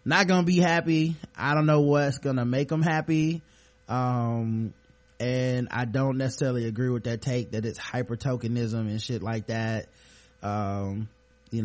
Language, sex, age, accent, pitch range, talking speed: English, male, 20-39, American, 125-165 Hz, 160 wpm